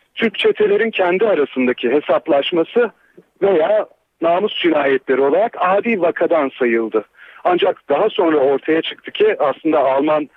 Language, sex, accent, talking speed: Turkish, male, native, 115 wpm